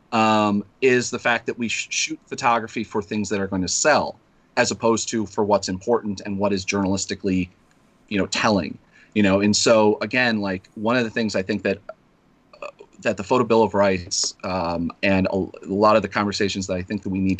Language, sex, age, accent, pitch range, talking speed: English, male, 30-49, American, 100-130 Hz, 210 wpm